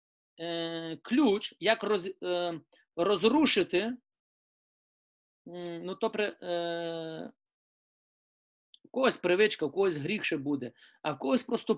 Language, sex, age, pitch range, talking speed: Ukrainian, male, 30-49, 180-255 Hz, 100 wpm